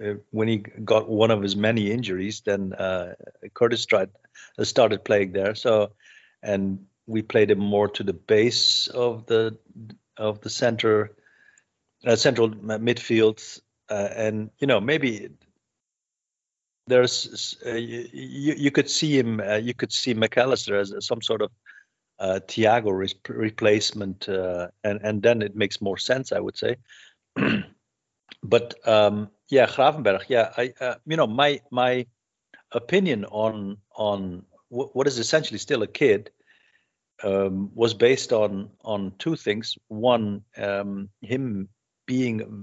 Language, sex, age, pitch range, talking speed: English, male, 50-69, 100-120 Hz, 140 wpm